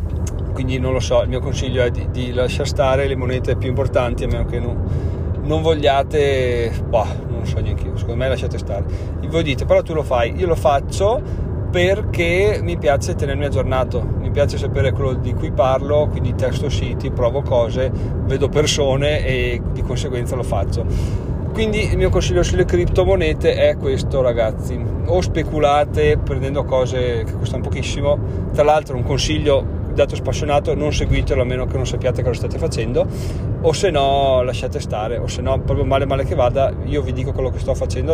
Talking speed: 185 wpm